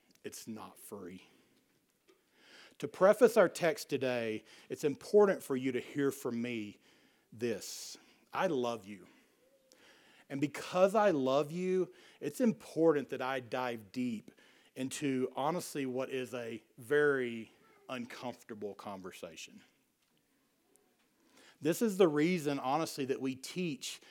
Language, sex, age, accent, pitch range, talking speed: English, male, 40-59, American, 125-165 Hz, 115 wpm